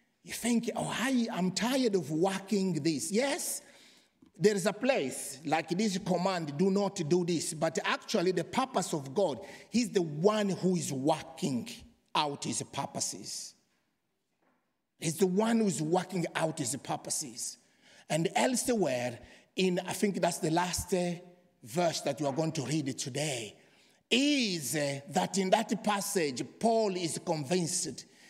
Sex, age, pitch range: male, 50-69, 170-225 Hz